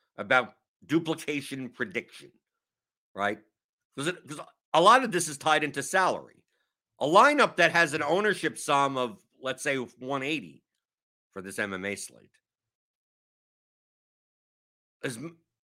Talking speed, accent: 115 wpm, American